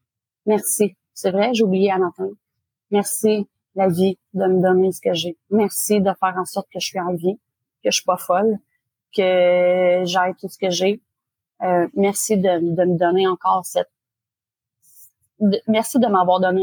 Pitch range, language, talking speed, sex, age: 180-210 Hz, English, 180 wpm, female, 30-49